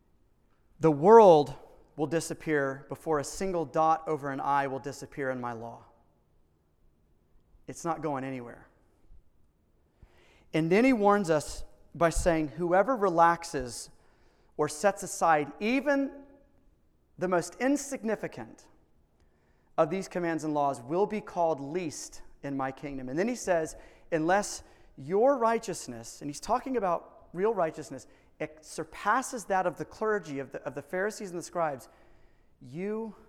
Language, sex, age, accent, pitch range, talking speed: English, male, 30-49, American, 125-170 Hz, 135 wpm